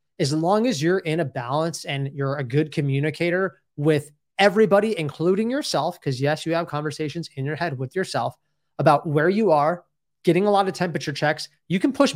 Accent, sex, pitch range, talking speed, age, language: American, male, 145-190 Hz, 190 wpm, 20-39, English